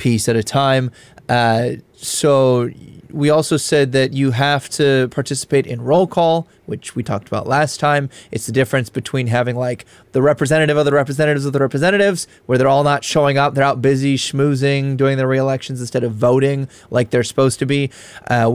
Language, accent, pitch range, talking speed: English, American, 125-145 Hz, 190 wpm